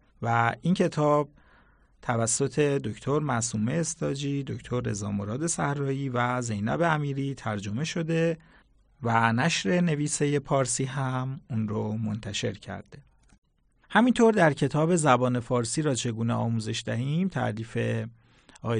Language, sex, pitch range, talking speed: Persian, male, 115-150 Hz, 115 wpm